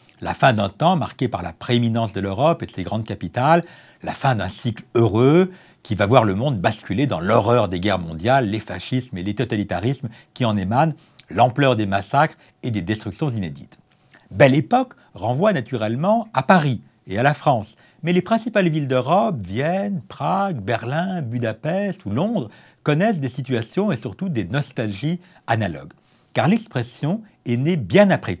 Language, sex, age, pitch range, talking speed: French, male, 60-79, 110-175 Hz, 170 wpm